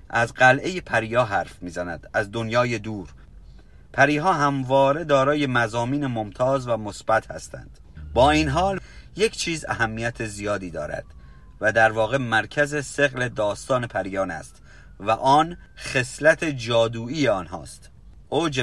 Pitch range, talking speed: 110-140 Hz, 120 wpm